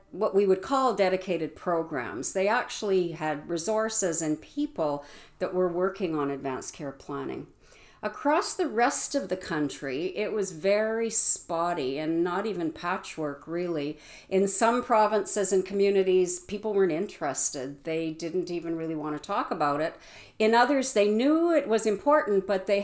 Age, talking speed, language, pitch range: 50-69, 160 wpm, English, 160-215 Hz